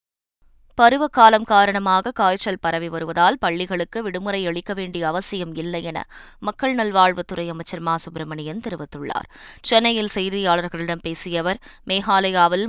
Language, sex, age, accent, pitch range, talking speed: Tamil, female, 20-39, native, 170-200 Hz, 105 wpm